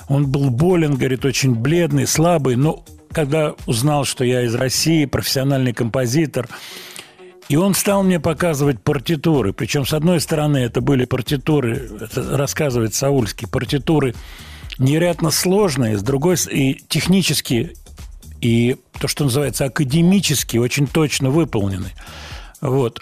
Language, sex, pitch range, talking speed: Russian, male, 120-155 Hz, 125 wpm